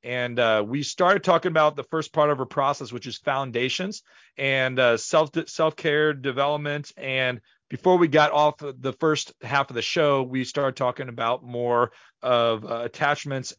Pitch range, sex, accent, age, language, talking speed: 125-150 Hz, male, American, 40-59, English, 175 wpm